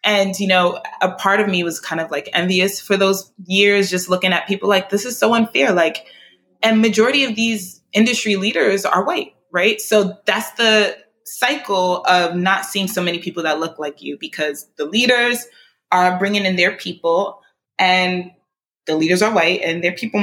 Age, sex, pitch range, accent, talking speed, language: 20-39, female, 165-220 Hz, American, 190 wpm, English